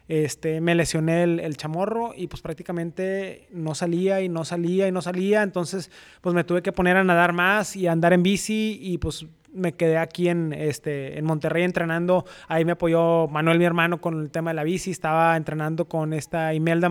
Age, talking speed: 20-39, 205 wpm